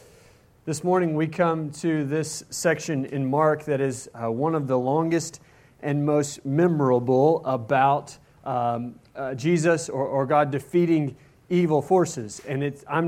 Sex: male